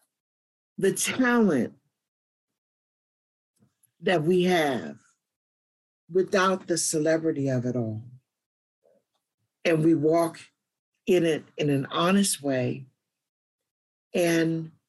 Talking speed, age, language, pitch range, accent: 85 wpm, 50-69, English, 155-190 Hz, American